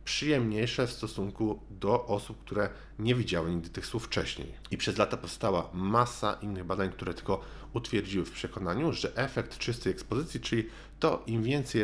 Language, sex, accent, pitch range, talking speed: Polish, male, native, 95-125 Hz, 160 wpm